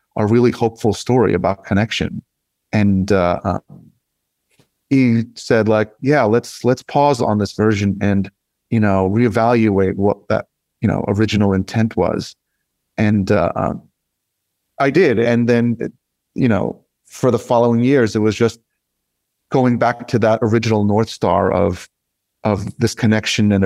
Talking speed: 140 wpm